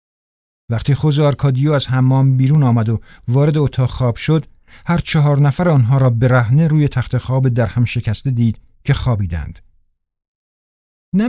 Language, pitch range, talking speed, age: Persian, 115-140 Hz, 150 wpm, 50-69